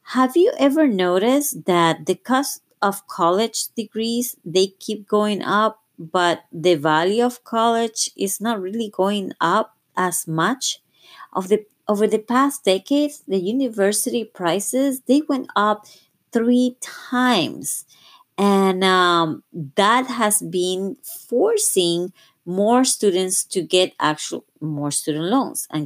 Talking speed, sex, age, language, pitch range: 130 wpm, female, 30-49, English, 170-245 Hz